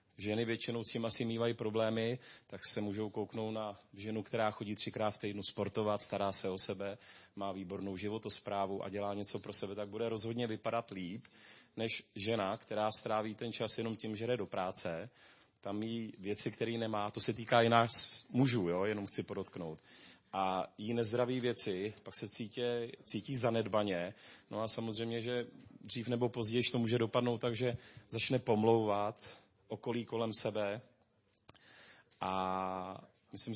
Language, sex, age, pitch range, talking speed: Czech, male, 30-49, 105-120 Hz, 155 wpm